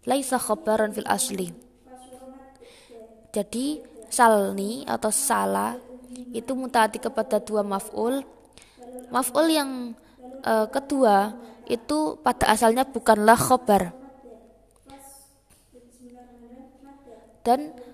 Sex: female